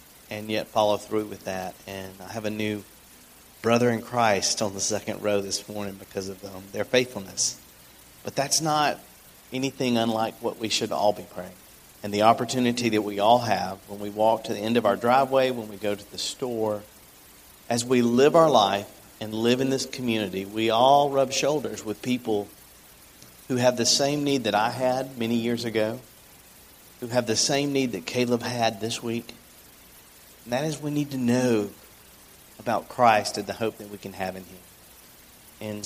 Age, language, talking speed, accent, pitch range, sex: 40-59, English, 190 wpm, American, 100-120 Hz, male